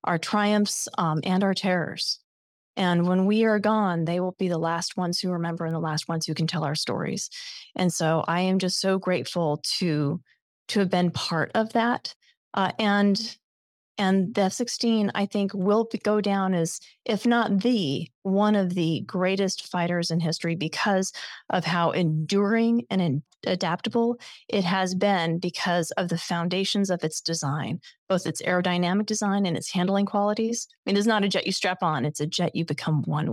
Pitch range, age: 170-215 Hz, 30-49